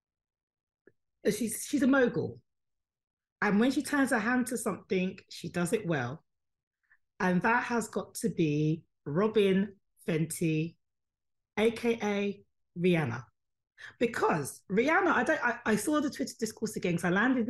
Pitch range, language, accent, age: 175-240 Hz, English, British, 40-59